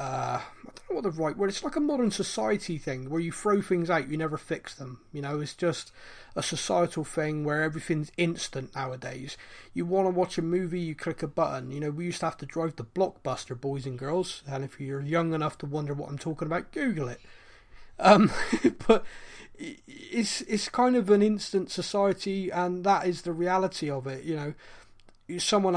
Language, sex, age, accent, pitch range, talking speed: English, male, 30-49, British, 150-190 Hz, 205 wpm